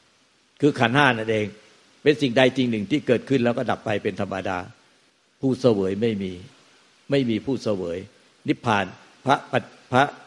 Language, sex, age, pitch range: Thai, male, 60-79, 105-130 Hz